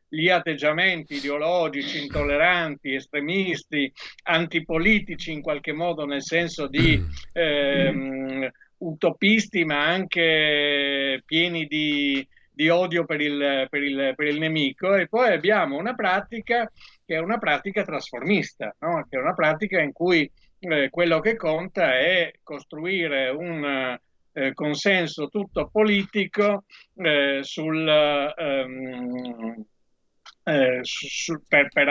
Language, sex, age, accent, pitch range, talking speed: Italian, male, 50-69, native, 130-165 Hz, 105 wpm